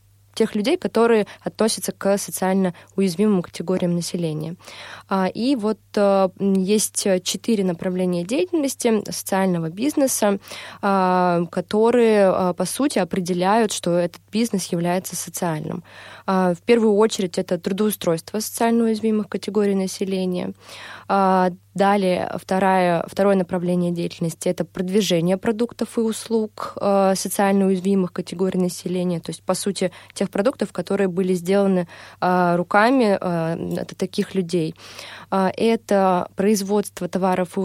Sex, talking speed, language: female, 105 wpm, Russian